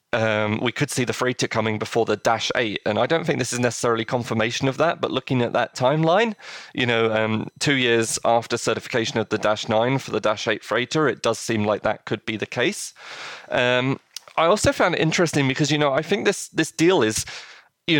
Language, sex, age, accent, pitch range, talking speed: English, male, 30-49, British, 110-140 Hz, 225 wpm